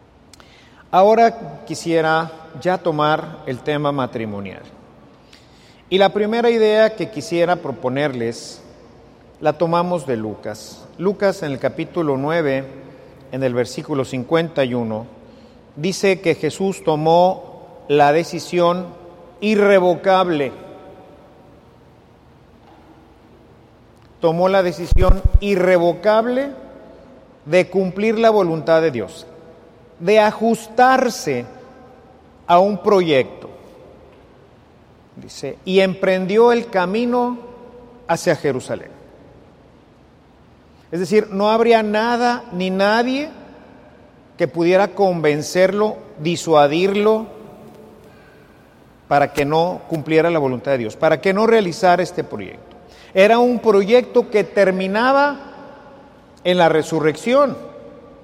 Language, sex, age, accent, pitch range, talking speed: Spanish, male, 50-69, Mexican, 150-215 Hz, 95 wpm